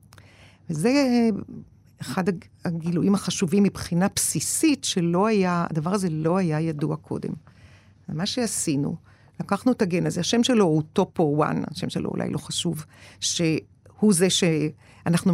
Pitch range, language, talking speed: 160-205 Hz, Hebrew, 130 wpm